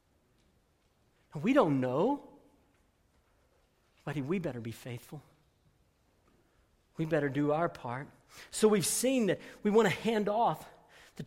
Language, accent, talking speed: English, American, 120 wpm